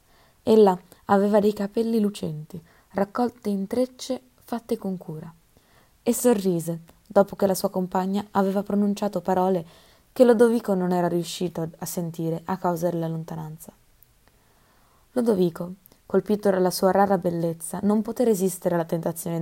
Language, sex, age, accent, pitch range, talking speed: Italian, female, 20-39, native, 170-225 Hz, 135 wpm